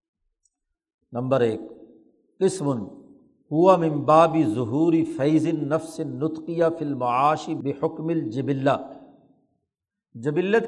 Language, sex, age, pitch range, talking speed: Urdu, male, 50-69, 140-175 Hz, 75 wpm